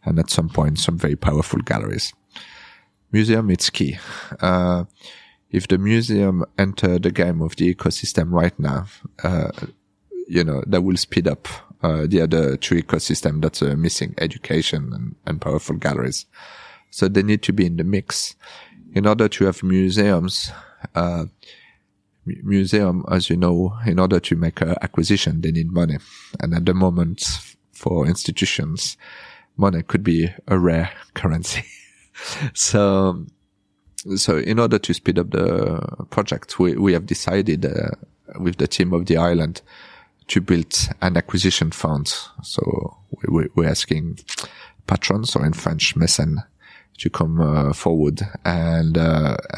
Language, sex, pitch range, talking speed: English, male, 80-95 Hz, 150 wpm